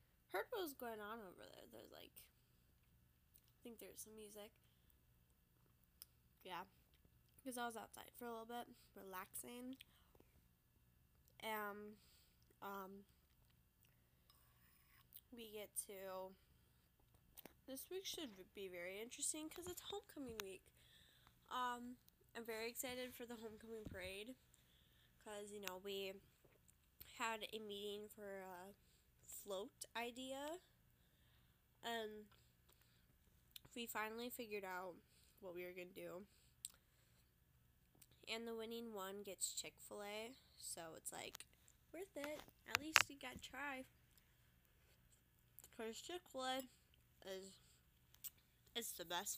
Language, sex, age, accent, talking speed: English, female, 10-29, American, 110 wpm